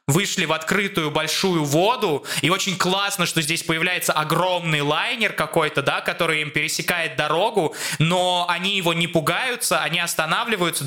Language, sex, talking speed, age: Russian, male, 145 wpm, 20-39